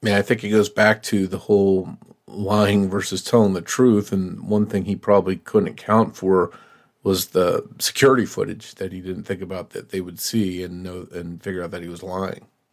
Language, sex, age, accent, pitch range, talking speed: English, male, 40-59, American, 100-125 Hz, 205 wpm